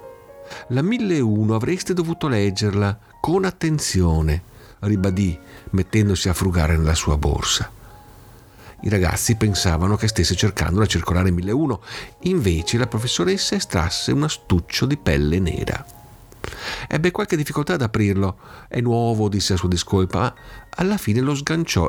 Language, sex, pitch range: Italian, male, 95-140 Hz